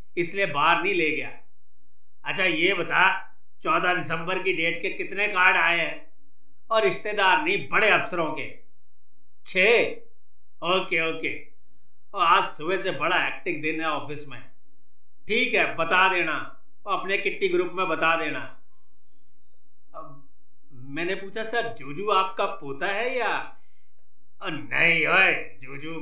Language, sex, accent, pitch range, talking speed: Hindi, male, native, 140-200 Hz, 135 wpm